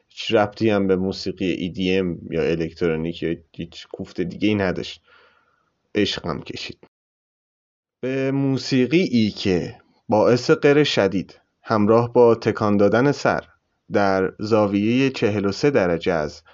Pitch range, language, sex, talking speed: 95-120 Hz, Persian, male, 125 wpm